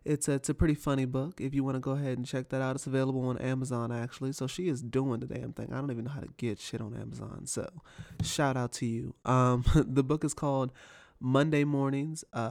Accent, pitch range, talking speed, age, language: American, 120-135 Hz, 245 wpm, 20-39, English